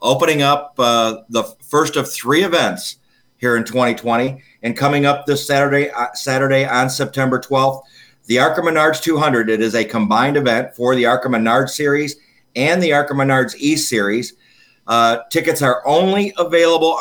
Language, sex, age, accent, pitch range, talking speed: English, male, 50-69, American, 120-145 Hz, 160 wpm